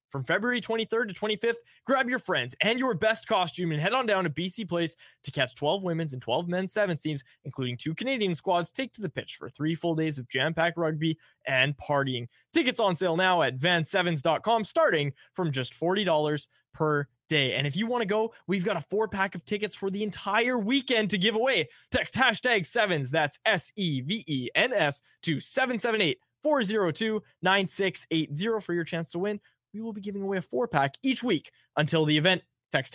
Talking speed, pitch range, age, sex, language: 185 wpm, 140-210 Hz, 20-39, male, English